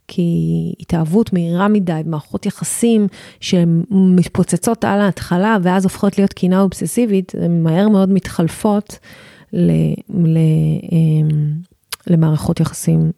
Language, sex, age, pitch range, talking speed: Hebrew, female, 30-49, 165-195 Hz, 90 wpm